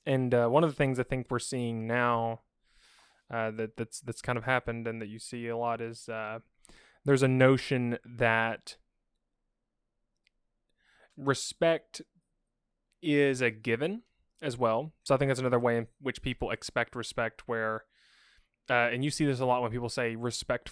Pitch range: 115-140 Hz